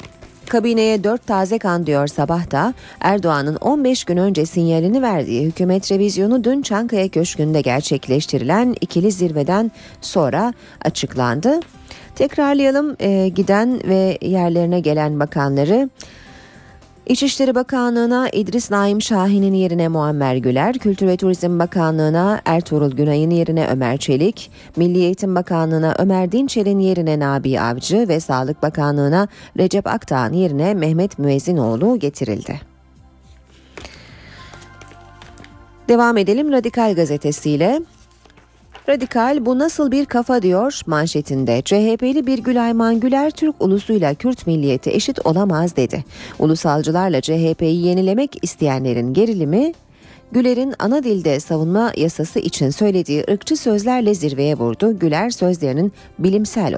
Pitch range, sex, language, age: 150-220 Hz, female, Turkish, 30-49